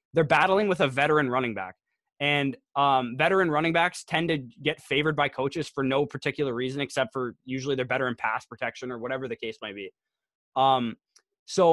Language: English